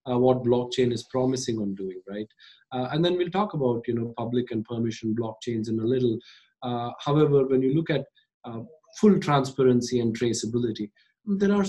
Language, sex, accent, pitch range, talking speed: English, male, Indian, 115-135 Hz, 185 wpm